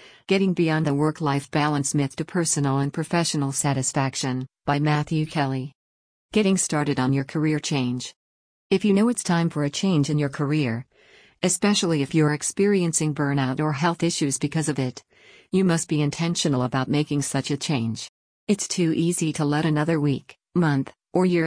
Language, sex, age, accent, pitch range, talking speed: English, female, 50-69, American, 140-165 Hz, 170 wpm